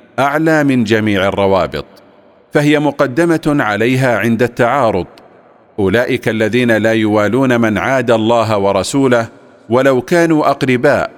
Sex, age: male, 50-69